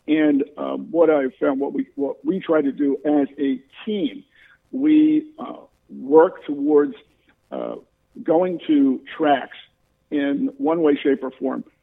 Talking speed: 145 wpm